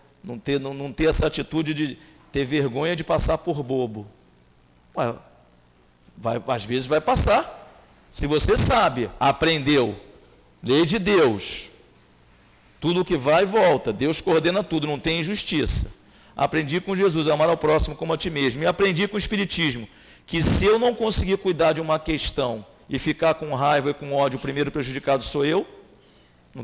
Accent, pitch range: Brazilian, 125-170 Hz